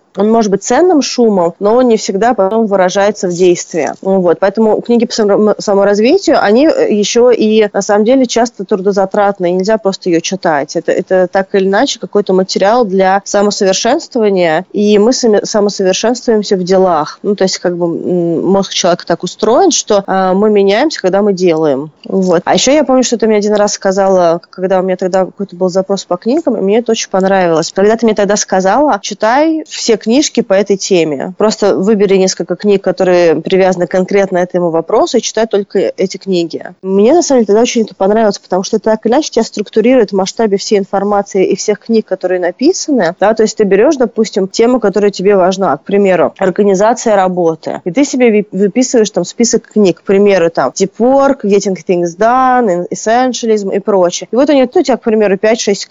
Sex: female